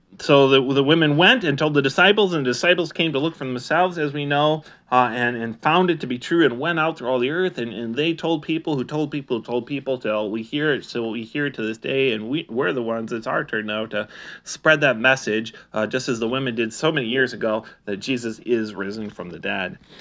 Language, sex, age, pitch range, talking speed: English, male, 30-49, 120-160 Hz, 260 wpm